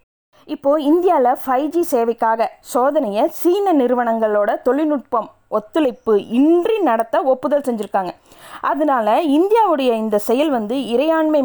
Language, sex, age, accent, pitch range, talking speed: Tamil, female, 20-39, native, 220-300 Hz, 105 wpm